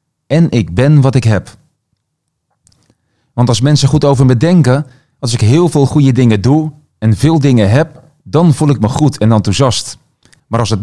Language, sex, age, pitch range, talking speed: Dutch, male, 40-59, 110-150 Hz, 190 wpm